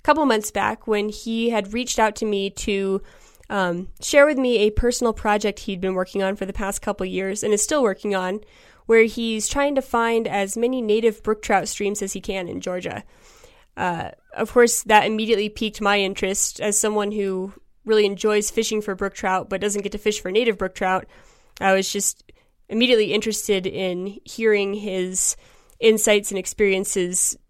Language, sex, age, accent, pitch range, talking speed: English, female, 10-29, American, 190-220 Hz, 190 wpm